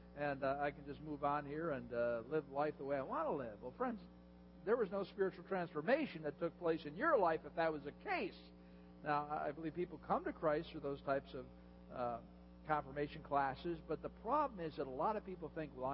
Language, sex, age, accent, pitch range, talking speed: English, male, 60-79, American, 140-235 Hz, 230 wpm